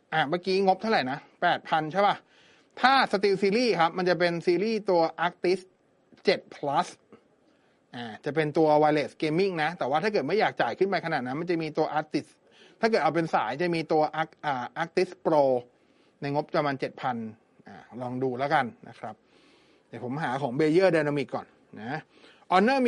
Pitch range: 150-190 Hz